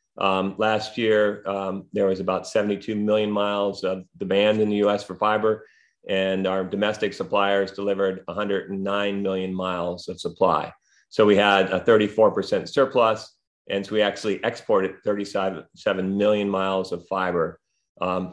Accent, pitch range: American, 95-105 Hz